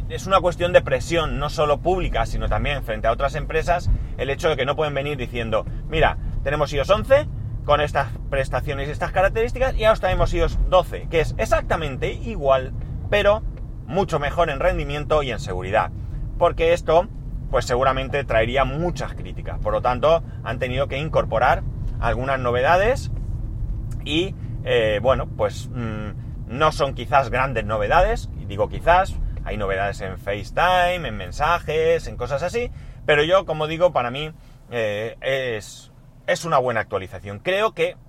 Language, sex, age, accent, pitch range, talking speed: Spanish, male, 30-49, Spanish, 115-150 Hz, 155 wpm